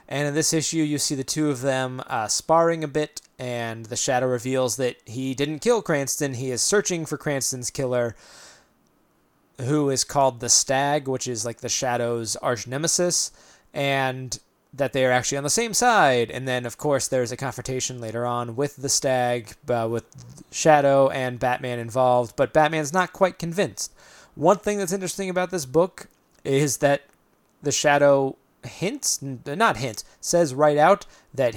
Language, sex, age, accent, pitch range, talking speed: English, male, 20-39, American, 125-155 Hz, 175 wpm